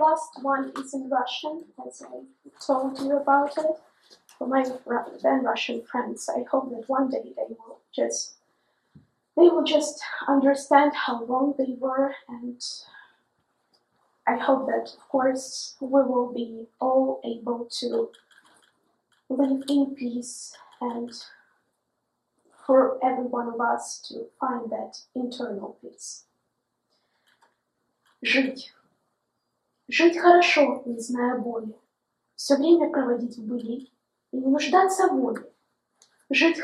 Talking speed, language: 125 wpm, English